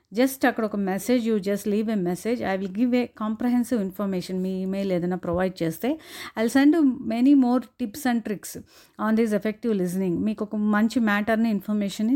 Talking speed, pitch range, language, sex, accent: 190 wpm, 210-280 Hz, Telugu, female, native